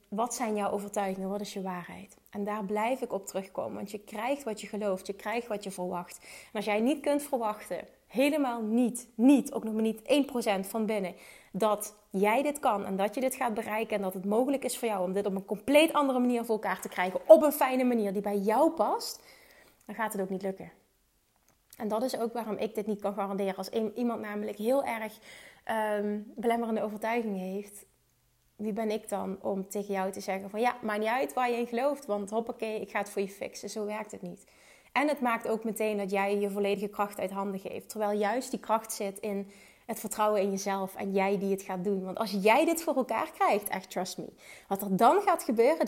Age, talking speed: 30-49, 230 wpm